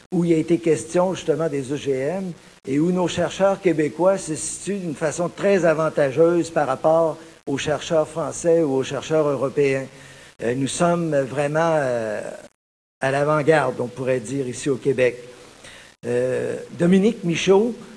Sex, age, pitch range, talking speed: male, 50-69, 145-175 Hz, 145 wpm